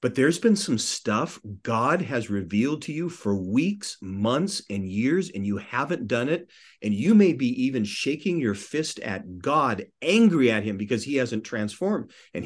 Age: 40-59